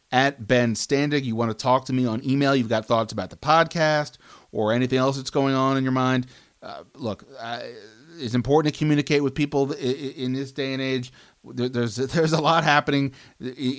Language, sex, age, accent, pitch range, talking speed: English, male, 30-49, American, 120-140 Hz, 210 wpm